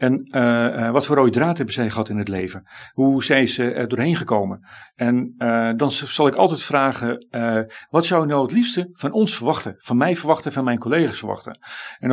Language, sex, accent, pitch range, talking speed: Dutch, male, Dutch, 115-160 Hz, 215 wpm